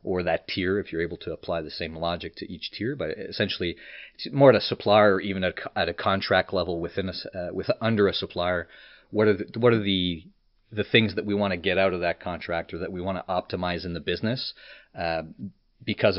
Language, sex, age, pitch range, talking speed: English, male, 40-59, 85-100 Hz, 225 wpm